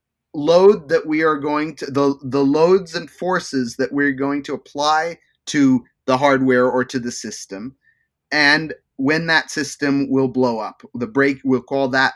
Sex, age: male, 30-49